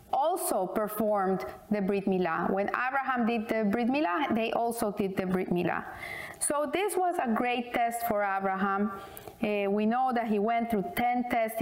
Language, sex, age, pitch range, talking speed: English, female, 30-49, 210-260 Hz, 175 wpm